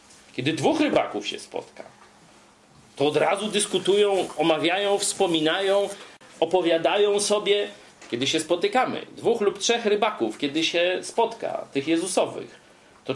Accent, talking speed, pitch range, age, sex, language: native, 120 wpm, 130-190 Hz, 40-59, male, Polish